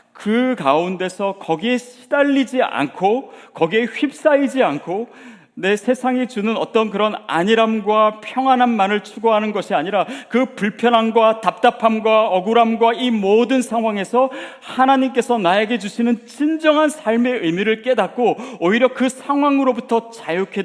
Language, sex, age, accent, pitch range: Korean, male, 40-59, native, 155-245 Hz